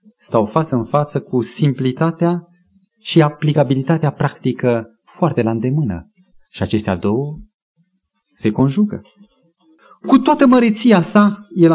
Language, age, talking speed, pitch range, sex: Romanian, 30-49, 110 wpm, 135-210 Hz, male